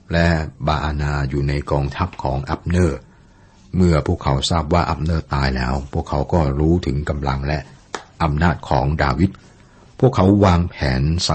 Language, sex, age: Thai, male, 60-79